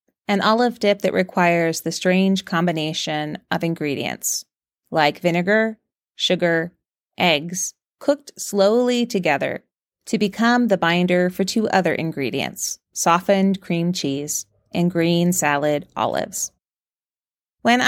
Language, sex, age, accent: English, female, 30-49, American